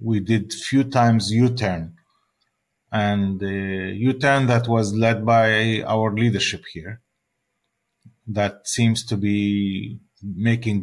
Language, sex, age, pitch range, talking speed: English, male, 40-59, 100-115 Hz, 110 wpm